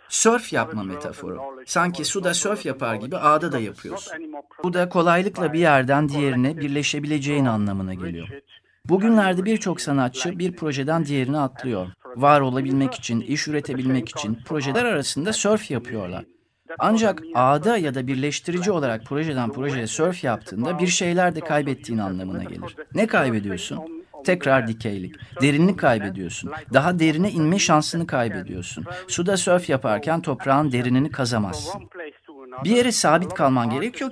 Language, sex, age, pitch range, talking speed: Turkish, male, 40-59, 120-175 Hz, 130 wpm